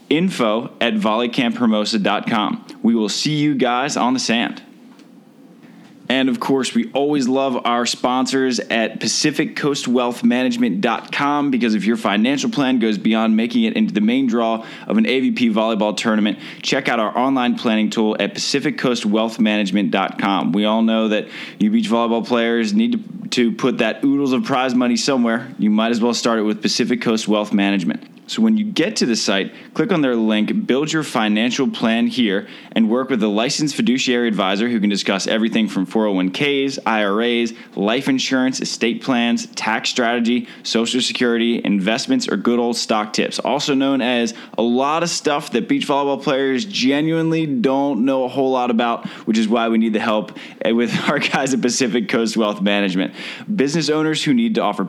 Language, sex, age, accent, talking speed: English, male, 20-39, American, 175 wpm